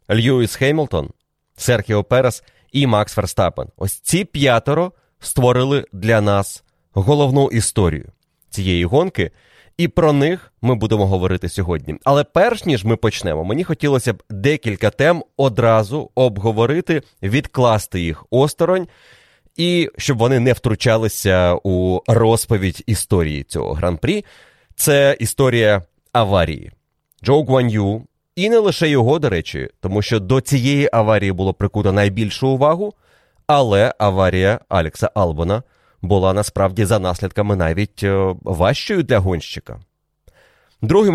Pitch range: 100-135 Hz